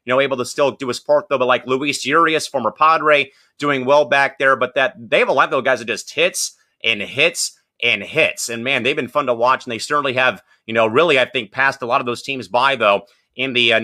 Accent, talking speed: American, 270 wpm